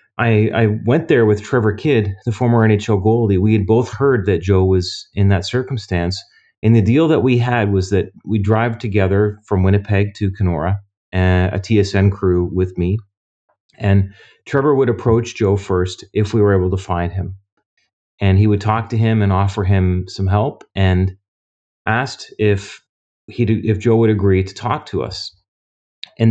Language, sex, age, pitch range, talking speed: English, male, 30-49, 95-110 Hz, 180 wpm